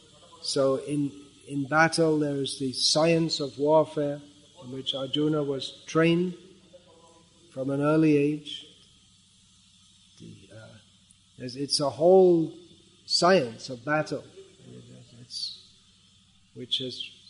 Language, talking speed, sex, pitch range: English, 105 wpm, male, 130-155 Hz